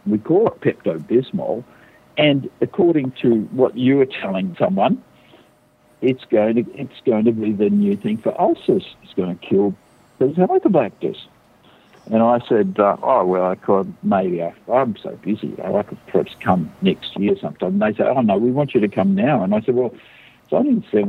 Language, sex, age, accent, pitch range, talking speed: English, male, 60-79, Australian, 110-155 Hz, 185 wpm